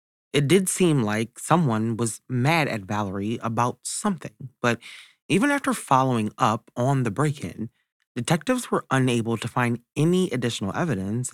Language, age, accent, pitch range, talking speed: English, 30-49, American, 105-150 Hz, 145 wpm